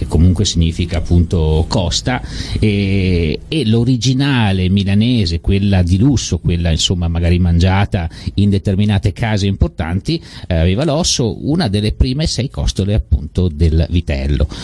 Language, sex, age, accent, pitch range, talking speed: Italian, male, 50-69, native, 80-105 Hz, 125 wpm